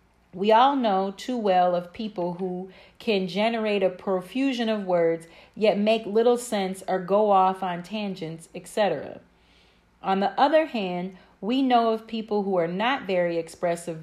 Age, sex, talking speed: 40-59, female, 160 wpm